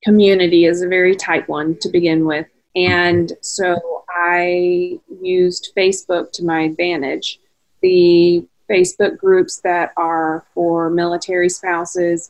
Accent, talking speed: American, 120 wpm